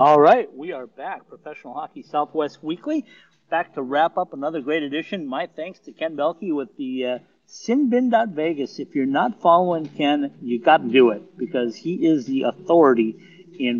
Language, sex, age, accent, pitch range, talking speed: English, male, 50-69, American, 130-180 Hz, 175 wpm